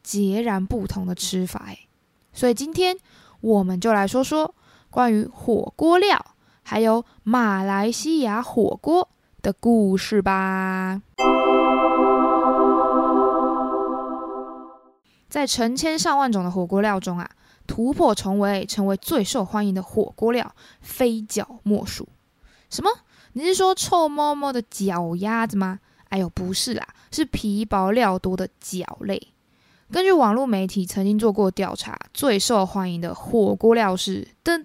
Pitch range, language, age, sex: 190-245 Hz, Chinese, 20-39, female